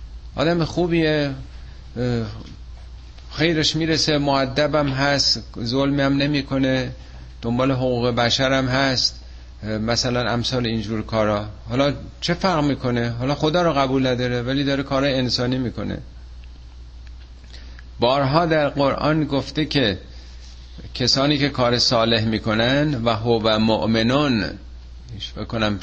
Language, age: Persian, 50-69